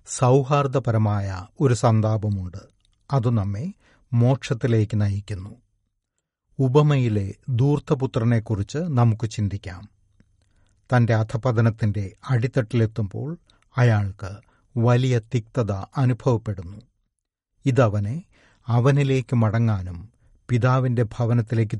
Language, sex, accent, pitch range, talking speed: Malayalam, male, native, 105-125 Hz, 65 wpm